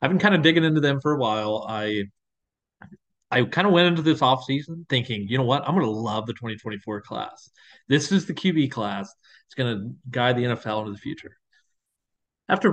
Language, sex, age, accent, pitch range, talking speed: English, male, 30-49, American, 115-155 Hz, 205 wpm